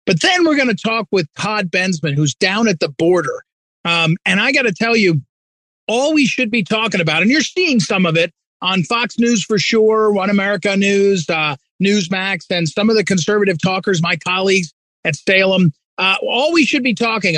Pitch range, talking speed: 175-225 Hz, 205 wpm